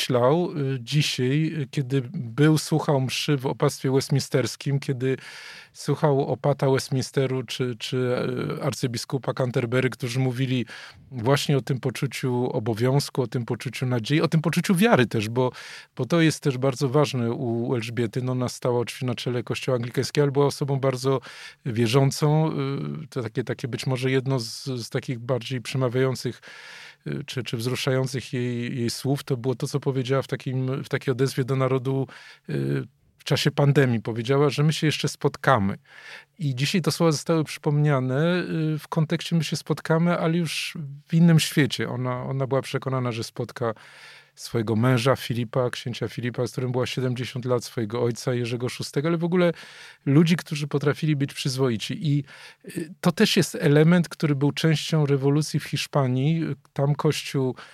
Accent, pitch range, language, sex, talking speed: native, 130-150 Hz, Polish, male, 155 wpm